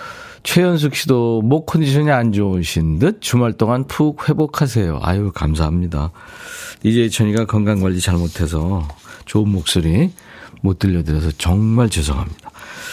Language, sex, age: Korean, male, 40-59